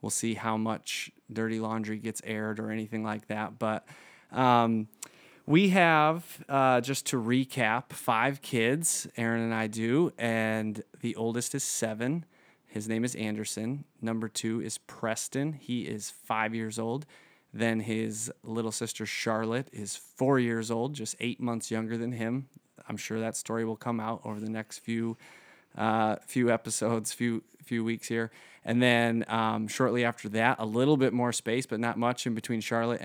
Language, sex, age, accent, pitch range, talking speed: English, male, 30-49, American, 110-125 Hz, 170 wpm